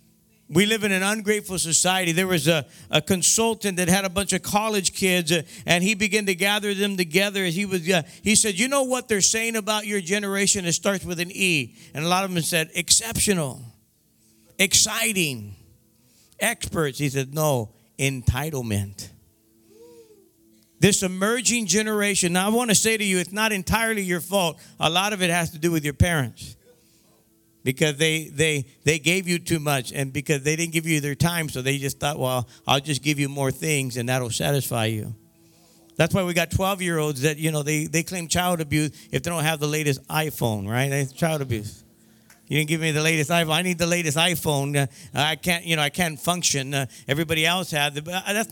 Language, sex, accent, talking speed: English, male, American, 195 wpm